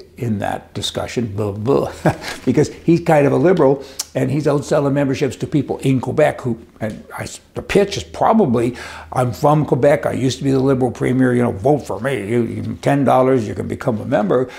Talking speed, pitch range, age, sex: 205 wpm, 115-140 Hz, 60-79, male